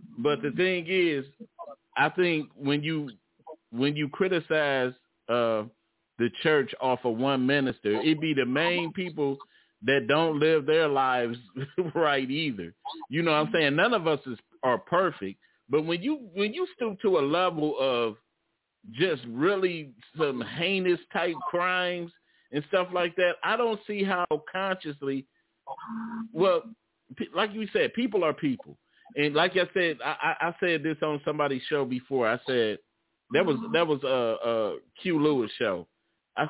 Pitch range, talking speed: 140-185 Hz, 160 wpm